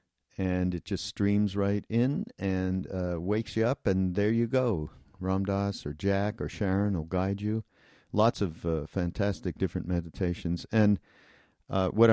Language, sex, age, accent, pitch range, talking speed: English, male, 50-69, American, 90-105 Hz, 160 wpm